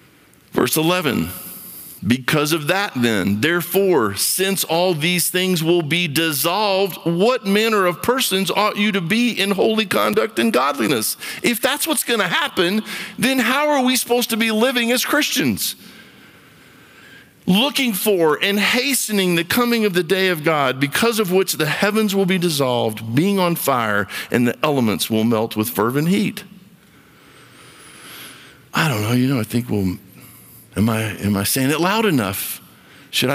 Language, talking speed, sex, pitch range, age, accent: English, 160 wpm, male, 130-205 Hz, 50-69, American